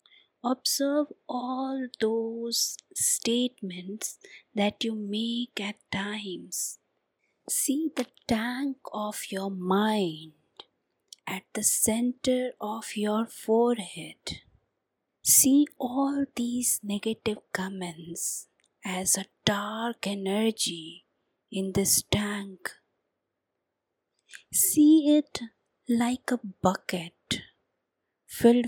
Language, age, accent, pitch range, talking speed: English, 30-49, Indian, 195-245 Hz, 80 wpm